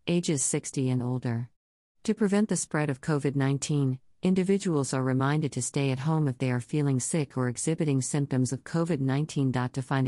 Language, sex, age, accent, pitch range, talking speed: English, female, 50-69, American, 130-165 Hz, 185 wpm